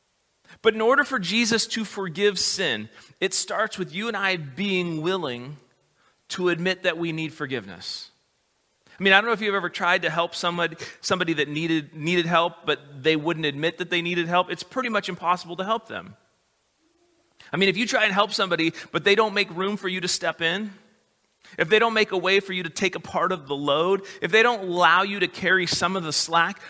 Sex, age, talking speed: male, 30-49, 220 wpm